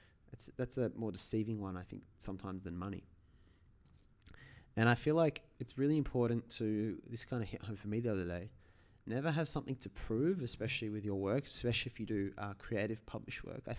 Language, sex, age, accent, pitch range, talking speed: English, male, 20-39, Australian, 95-120 Hz, 200 wpm